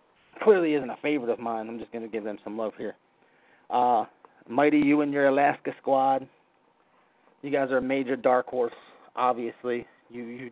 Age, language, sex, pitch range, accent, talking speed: 30-49, English, male, 120-145 Hz, American, 185 wpm